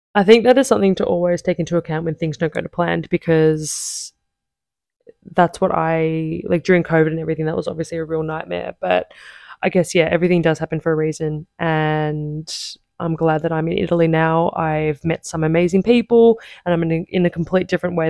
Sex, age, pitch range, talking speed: female, 20-39, 165-185 Hz, 205 wpm